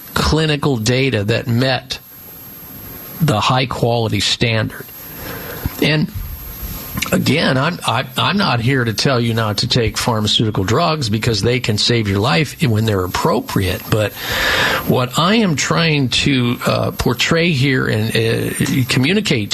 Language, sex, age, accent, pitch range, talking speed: English, male, 50-69, American, 120-165 Hz, 135 wpm